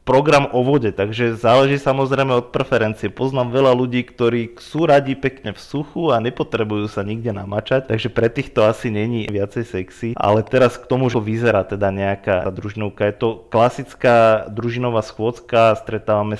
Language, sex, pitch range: Slovak, male, 110-125 Hz